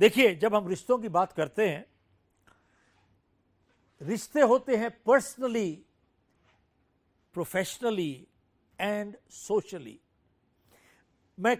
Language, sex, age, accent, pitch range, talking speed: Hindi, male, 60-79, native, 180-265 Hz, 85 wpm